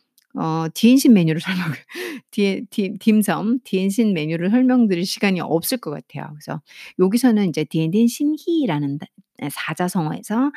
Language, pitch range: Korean, 165-255 Hz